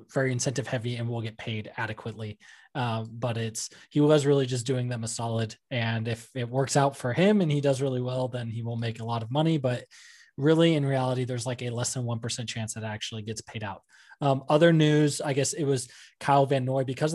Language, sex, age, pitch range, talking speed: English, male, 20-39, 115-140 Hz, 230 wpm